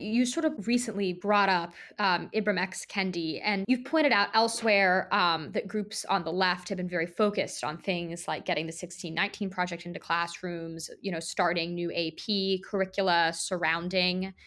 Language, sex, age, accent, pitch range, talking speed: English, female, 20-39, American, 175-210 Hz, 170 wpm